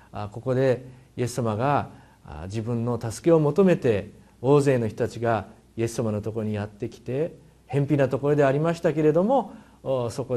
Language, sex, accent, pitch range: Japanese, male, native, 110-140 Hz